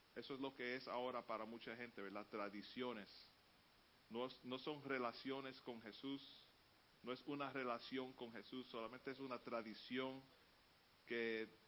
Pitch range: 120-175 Hz